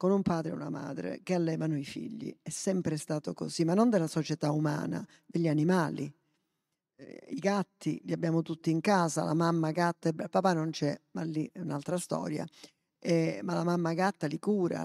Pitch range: 160-190 Hz